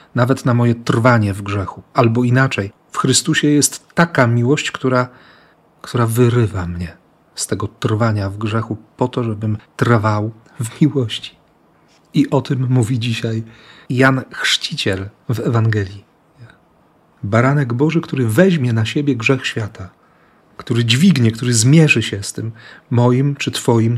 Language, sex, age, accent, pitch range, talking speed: Polish, male, 40-59, native, 110-135 Hz, 140 wpm